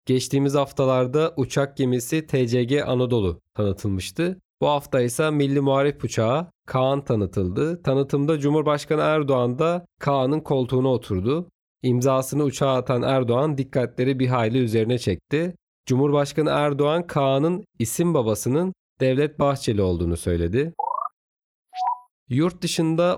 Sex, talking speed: male, 110 wpm